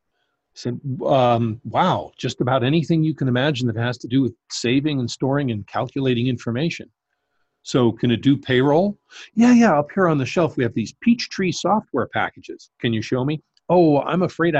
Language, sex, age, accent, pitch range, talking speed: English, male, 50-69, American, 120-160 Hz, 195 wpm